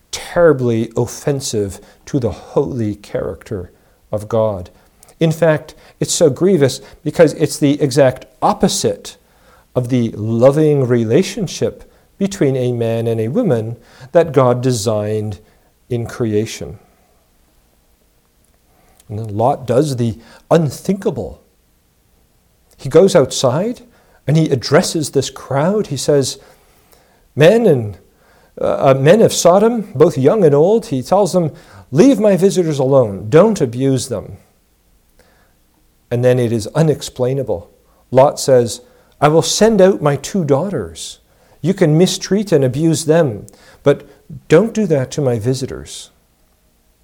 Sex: male